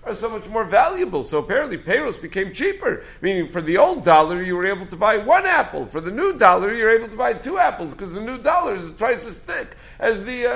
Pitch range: 145-180 Hz